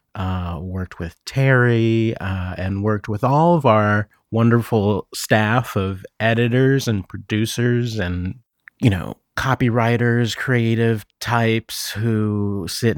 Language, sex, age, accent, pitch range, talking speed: English, male, 30-49, American, 100-130 Hz, 115 wpm